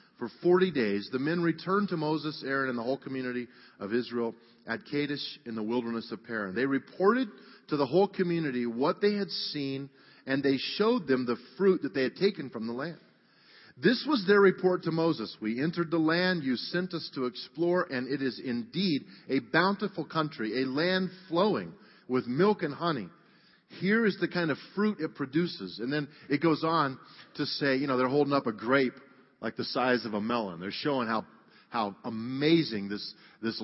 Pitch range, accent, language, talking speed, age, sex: 125-175 Hz, American, English, 195 wpm, 40-59, male